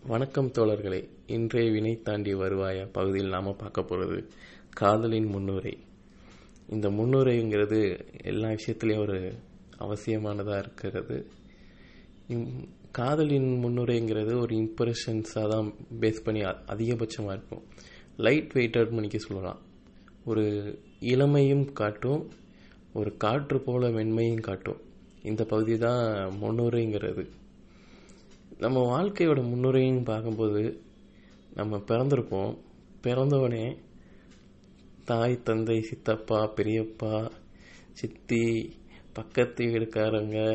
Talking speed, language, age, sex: 85 wpm, Tamil, 20-39, male